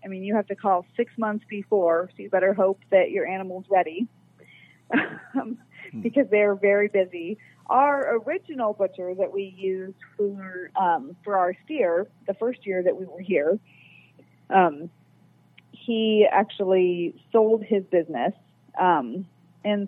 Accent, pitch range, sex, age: American, 180-215 Hz, female, 30-49